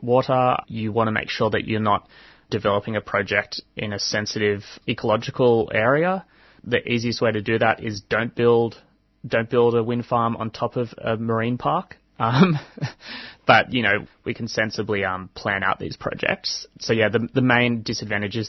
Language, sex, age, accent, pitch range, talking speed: English, male, 20-39, Australian, 105-125 Hz, 180 wpm